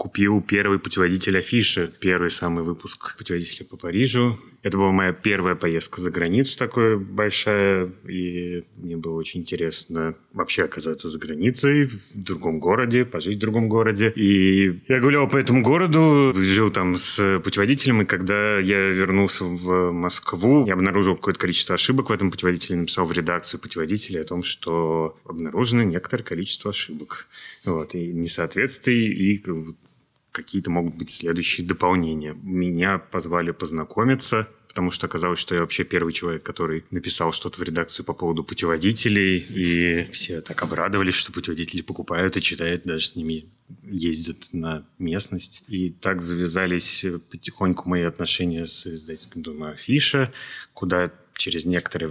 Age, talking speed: 30-49, 145 wpm